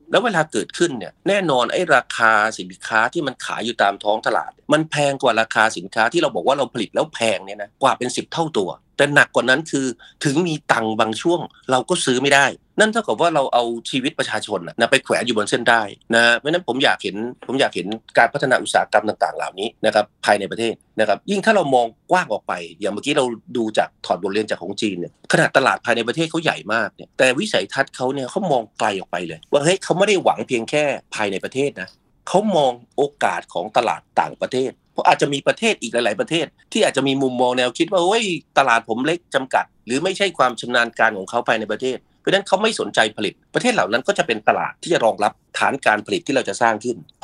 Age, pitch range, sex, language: 30-49, 115-155 Hz, male, Thai